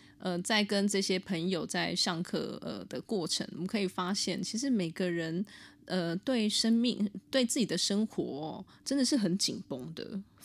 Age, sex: 20-39, female